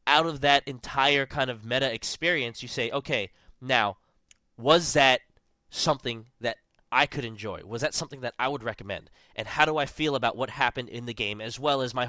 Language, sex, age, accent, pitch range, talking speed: English, male, 20-39, American, 125-175 Hz, 205 wpm